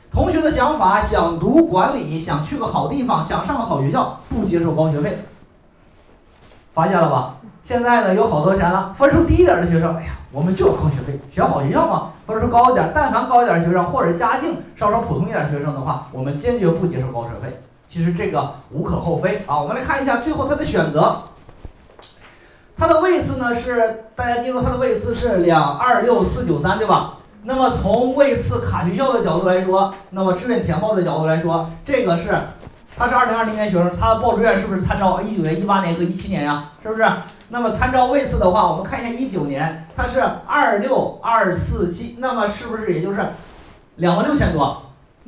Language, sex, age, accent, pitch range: Chinese, male, 30-49, native, 165-235 Hz